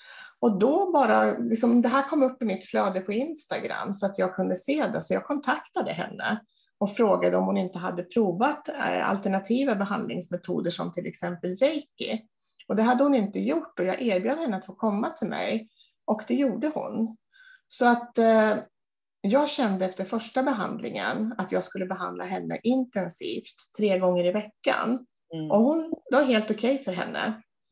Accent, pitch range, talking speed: Swedish, 185-255 Hz, 170 wpm